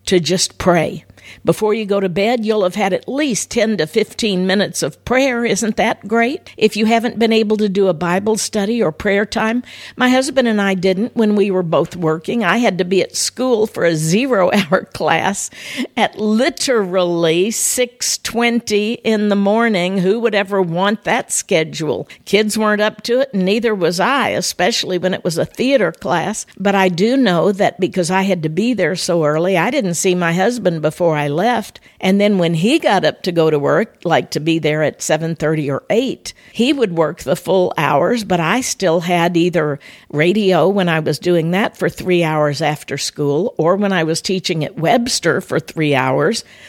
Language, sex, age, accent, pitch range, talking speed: English, female, 60-79, American, 175-220 Hz, 200 wpm